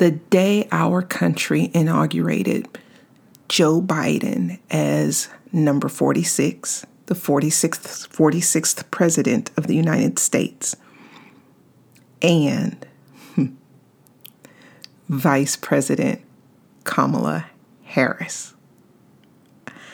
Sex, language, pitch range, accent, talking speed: female, English, 155-190 Hz, American, 70 wpm